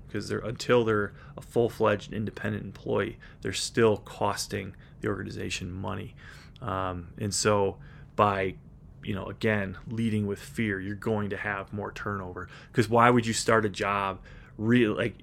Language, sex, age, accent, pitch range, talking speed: English, male, 20-39, American, 95-115 Hz, 155 wpm